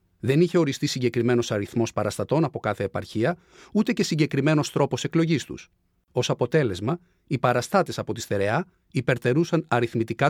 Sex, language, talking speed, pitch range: male, Greek, 140 wpm, 120-170 Hz